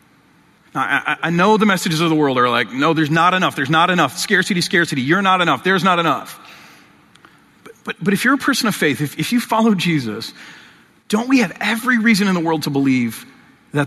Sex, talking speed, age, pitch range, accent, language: male, 215 wpm, 40-59, 160-230 Hz, American, English